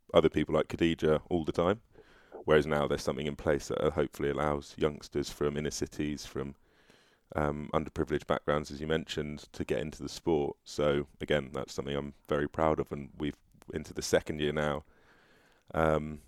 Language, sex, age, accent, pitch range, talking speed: English, male, 30-49, British, 75-85 Hz, 180 wpm